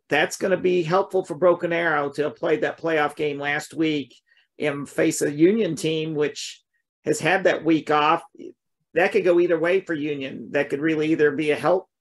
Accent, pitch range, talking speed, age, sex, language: American, 155-180 Hz, 205 wpm, 50-69, male, English